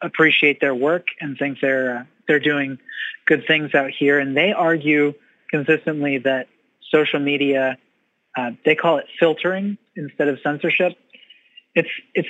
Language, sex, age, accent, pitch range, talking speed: English, male, 30-49, American, 135-160 Hz, 145 wpm